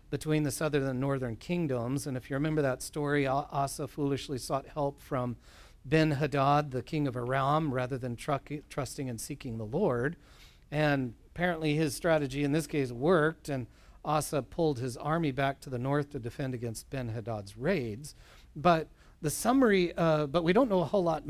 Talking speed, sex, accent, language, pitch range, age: 175 wpm, male, American, English, 130-165 Hz, 40-59